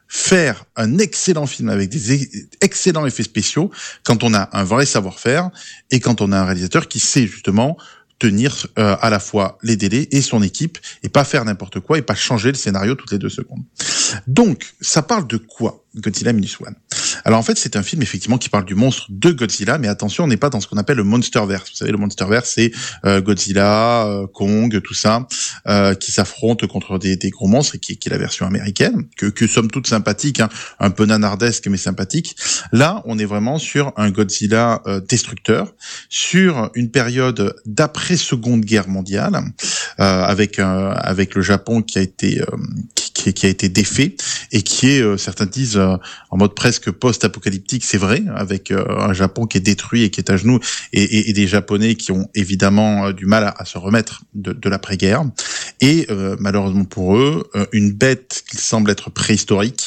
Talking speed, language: 195 wpm, French